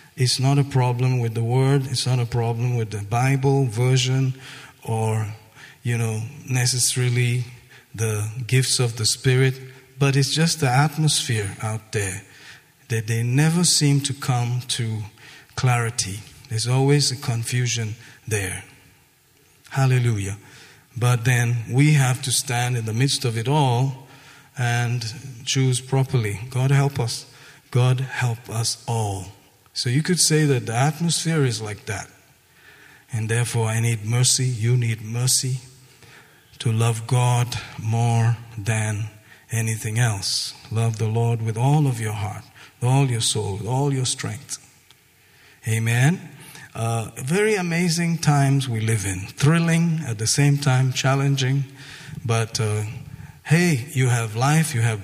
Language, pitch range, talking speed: English, 115-140 Hz, 140 wpm